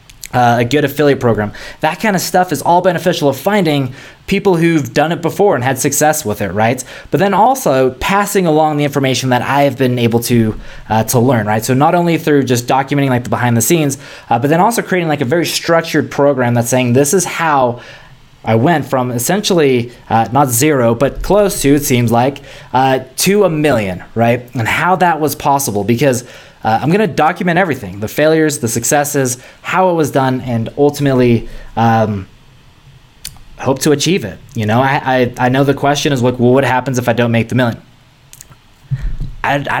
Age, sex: 20-39, male